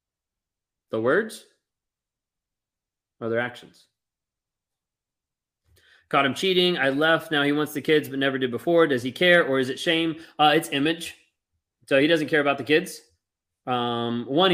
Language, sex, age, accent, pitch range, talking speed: English, male, 30-49, American, 130-170 Hz, 155 wpm